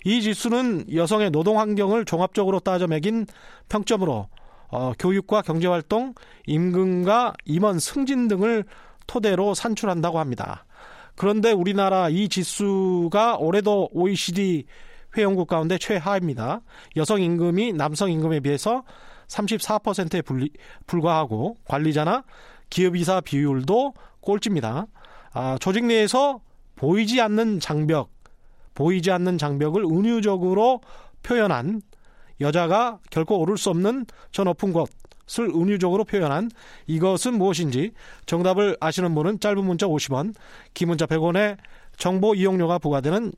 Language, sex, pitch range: Korean, male, 160-215 Hz